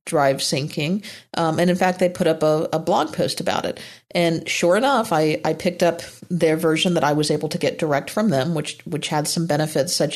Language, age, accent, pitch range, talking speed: English, 50-69, American, 155-190 Hz, 230 wpm